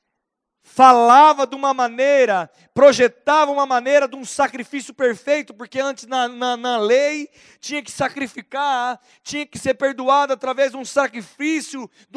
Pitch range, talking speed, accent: 230-290 Hz, 145 wpm, Brazilian